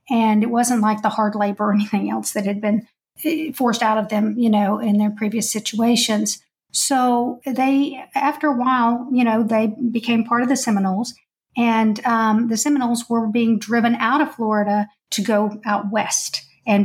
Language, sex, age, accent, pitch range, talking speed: English, female, 50-69, American, 210-245 Hz, 180 wpm